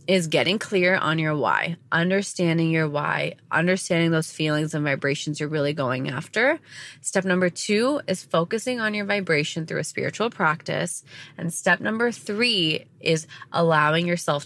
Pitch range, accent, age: 150-185 Hz, American, 20-39